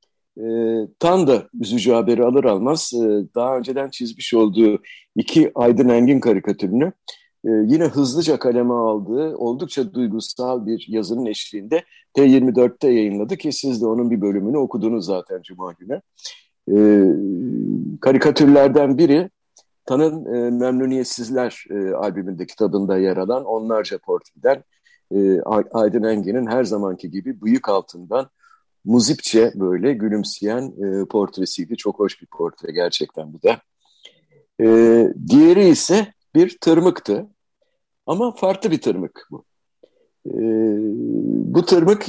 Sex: male